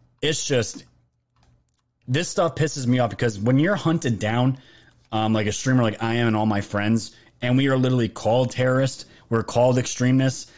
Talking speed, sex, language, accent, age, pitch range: 180 wpm, male, English, American, 30-49, 110-140 Hz